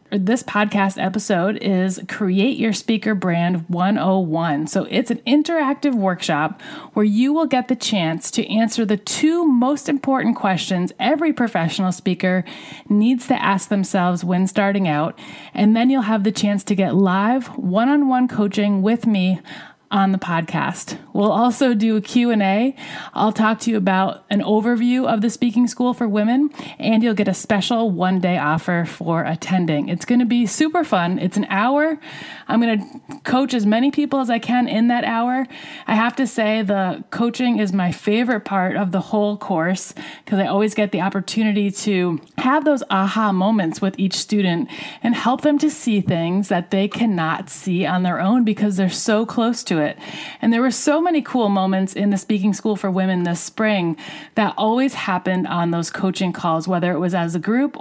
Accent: American